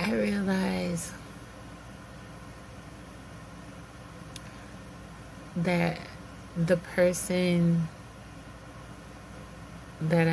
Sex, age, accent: female, 30-49, American